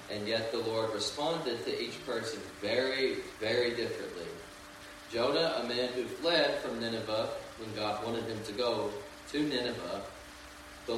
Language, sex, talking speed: English, male, 150 wpm